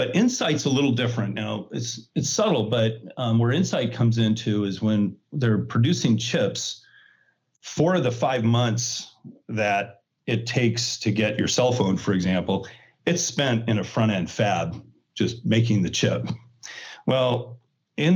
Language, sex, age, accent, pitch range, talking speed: English, male, 40-59, American, 110-135 Hz, 160 wpm